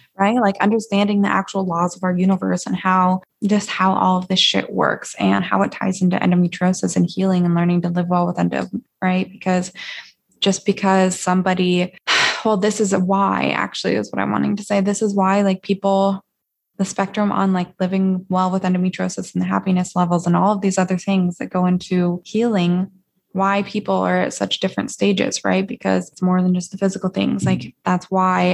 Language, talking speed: English, 200 wpm